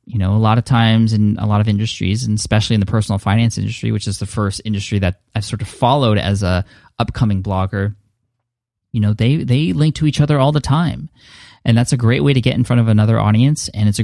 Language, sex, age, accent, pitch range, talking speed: English, male, 10-29, American, 105-125 Hz, 250 wpm